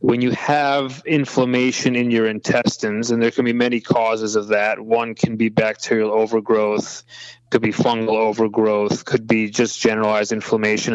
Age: 30-49